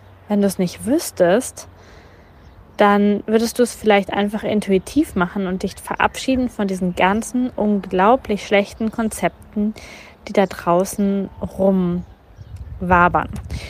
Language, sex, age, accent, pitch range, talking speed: German, female, 20-39, German, 185-220 Hz, 115 wpm